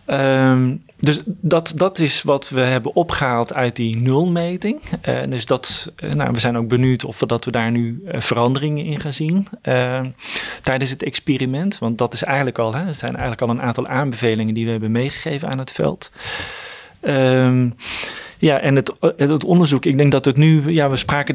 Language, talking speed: Dutch, 195 wpm